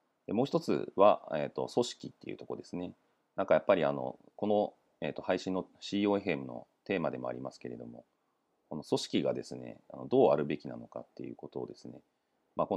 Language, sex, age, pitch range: Japanese, male, 40-59, 70-120 Hz